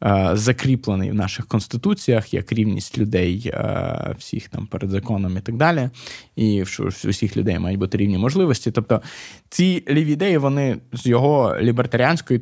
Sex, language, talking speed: male, Ukrainian, 140 wpm